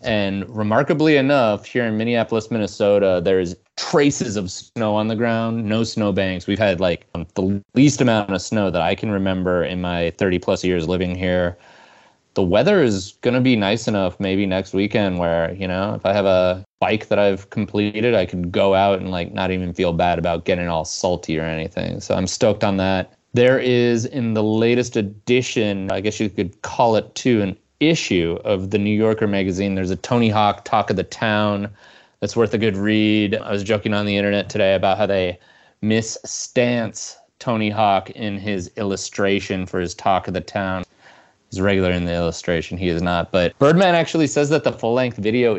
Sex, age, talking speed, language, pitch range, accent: male, 30-49, 200 wpm, English, 95-110 Hz, American